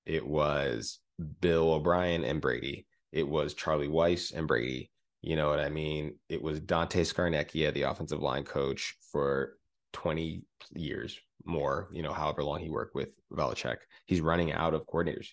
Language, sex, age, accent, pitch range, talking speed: English, male, 20-39, American, 75-85 Hz, 165 wpm